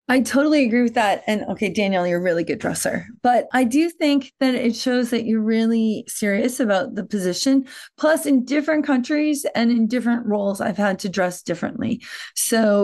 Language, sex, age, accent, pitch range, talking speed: English, female, 30-49, American, 205-260 Hz, 190 wpm